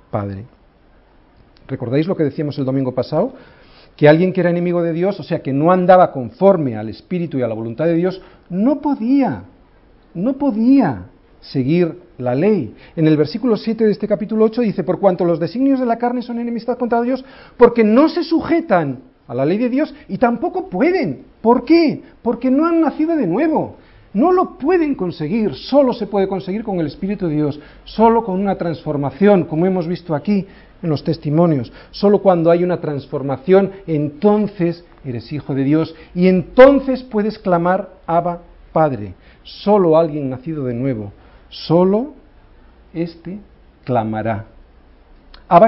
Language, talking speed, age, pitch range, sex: Spanish, 165 wpm, 40-59, 145-205 Hz, male